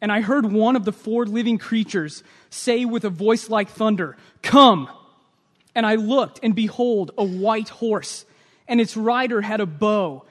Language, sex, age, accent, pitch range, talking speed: English, male, 20-39, American, 195-240 Hz, 175 wpm